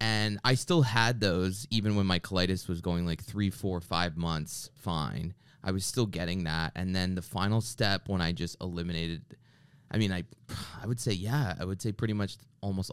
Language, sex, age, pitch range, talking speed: English, male, 20-39, 90-115 Hz, 205 wpm